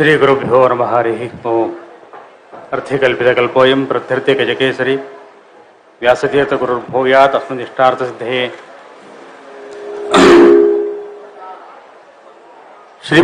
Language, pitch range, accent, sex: Kannada, 140-185 Hz, native, male